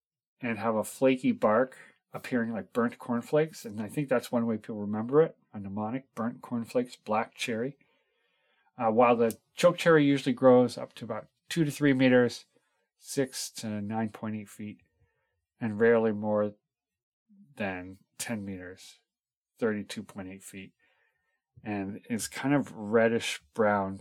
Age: 40-59